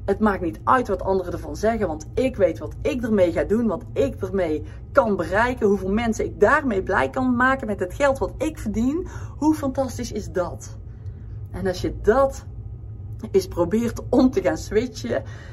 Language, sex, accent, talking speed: Dutch, female, Dutch, 185 wpm